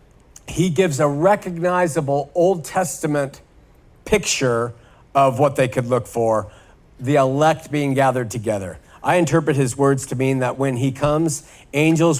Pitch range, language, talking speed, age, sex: 130-160 Hz, English, 145 wpm, 50-69, male